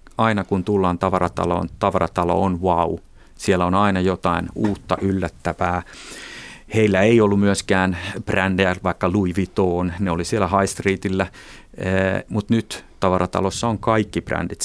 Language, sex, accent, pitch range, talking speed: Finnish, male, native, 90-100 Hz, 130 wpm